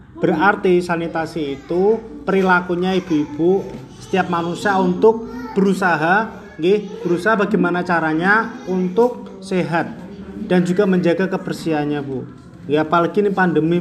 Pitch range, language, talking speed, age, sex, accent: 155-195 Hz, Indonesian, 105 wpm, 30-49, male, native